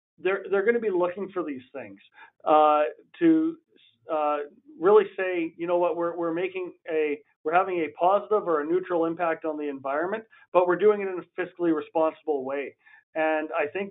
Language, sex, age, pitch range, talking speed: English, male, 40-59, 150-180 Hz, 190 wpm